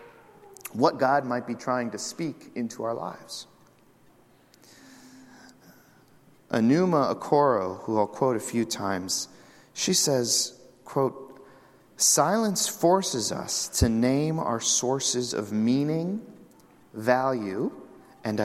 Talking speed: 100 wpm